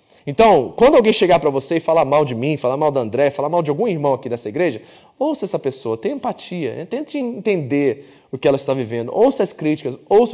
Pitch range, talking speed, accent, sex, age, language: 135-180 Hz, 230 wpm, Brazilian, male, 20-39, Portuguese